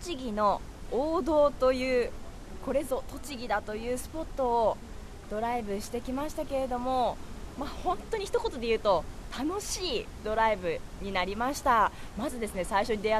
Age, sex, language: 20-39, female, Japanese